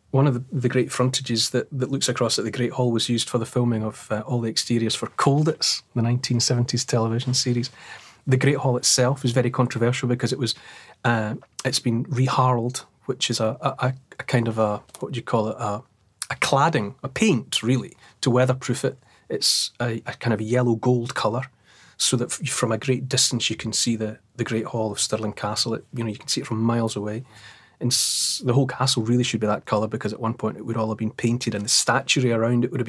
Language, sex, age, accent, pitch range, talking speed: English, male, 30-49, British, 115-130 Hz, 230 wpm